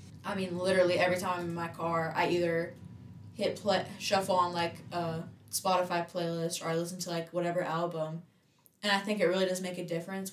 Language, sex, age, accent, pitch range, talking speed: English, female, 10-29, American, 160-180 Hz, 200 wpm